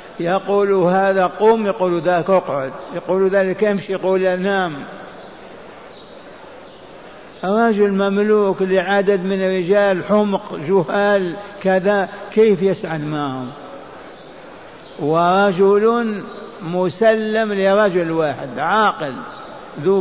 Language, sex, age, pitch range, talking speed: Arabic, male, 60-79, 180-195 Hz, 90 wpm